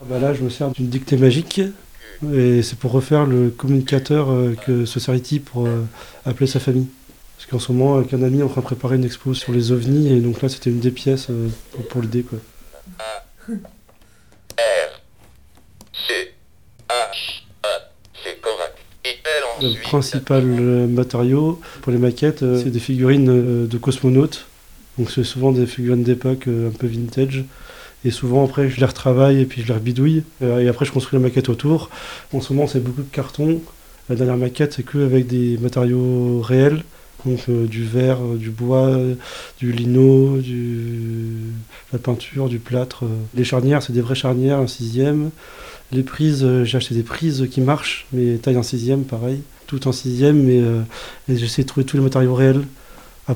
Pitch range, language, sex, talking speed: 120-135 Hz, French, male, 165 wpm